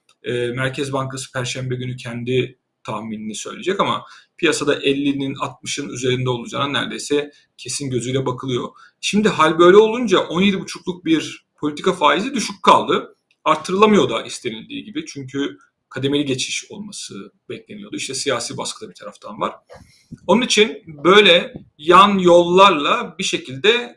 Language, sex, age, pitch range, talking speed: Turkish, male, 40-59, 135-185 Hz, 120 wpm